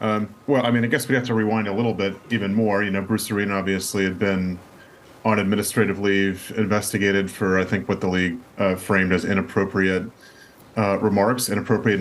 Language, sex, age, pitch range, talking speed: English, male, 30-49, 100-110 Hz, 195 wpm